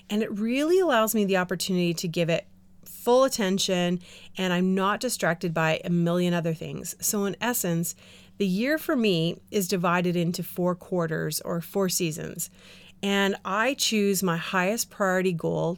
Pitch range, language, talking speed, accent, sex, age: 170-205 Hz, English, 165 wpm, American, female, 30-49